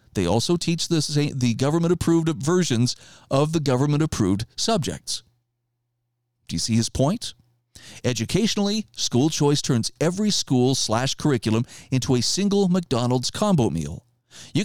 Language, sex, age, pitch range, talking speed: English, male, 40-59, 120-170 Hz, 115 wpm